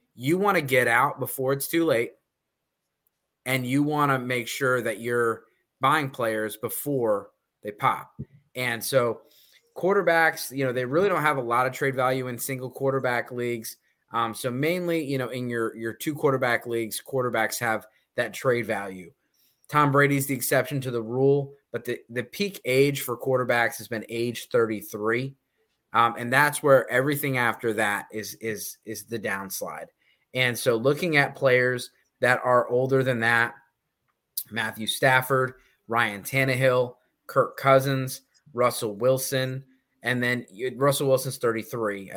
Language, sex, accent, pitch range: English, male, American, 115-135 Hz